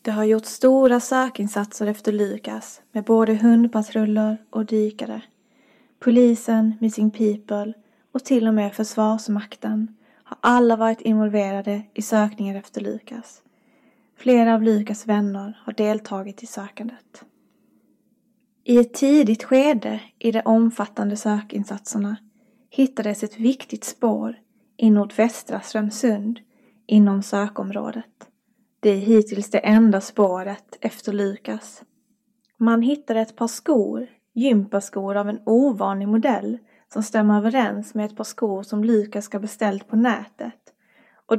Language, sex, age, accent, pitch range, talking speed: English, female, 20-39, Swedish, 210-235 Hz, 125 wpm